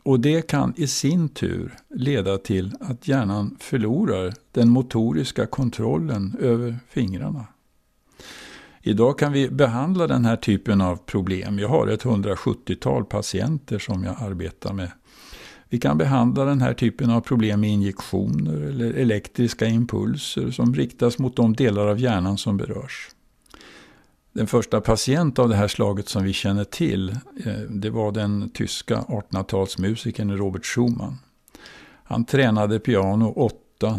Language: Swedish